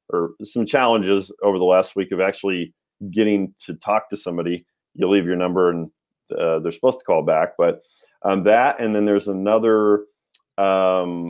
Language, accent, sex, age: English, American, male, 40-59